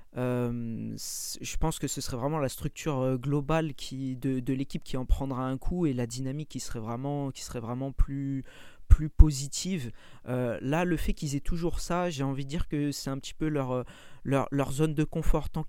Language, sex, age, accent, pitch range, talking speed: French, male, 40-59, French, 125-155 Hz, 210 wpm